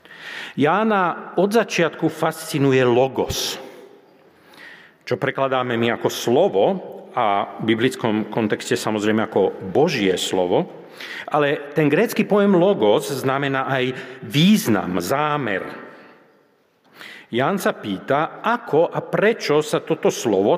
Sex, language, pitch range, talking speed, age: male, Slovak, 110-145 Hz, 105 wpm, 40-59